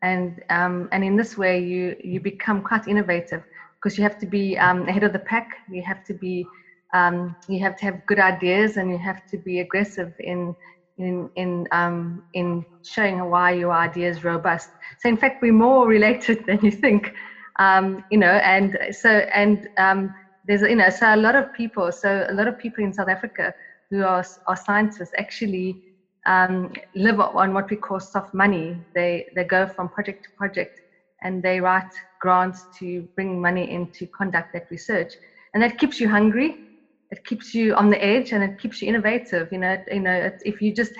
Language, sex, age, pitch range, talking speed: English, female, 30-49, 180-205 Hz, 200 wpm